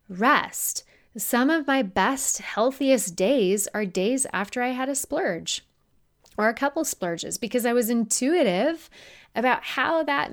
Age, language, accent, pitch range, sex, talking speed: 20-39, English, American, 185-255 Hz, female, 145 wpm